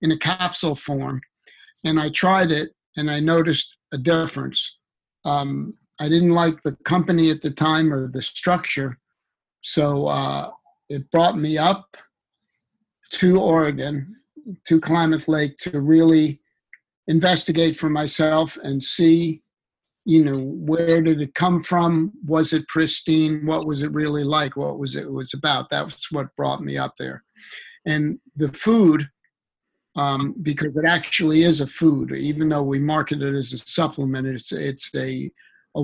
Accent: American